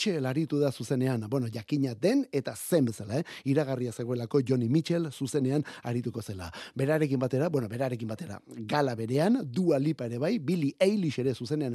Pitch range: 135-185 Hz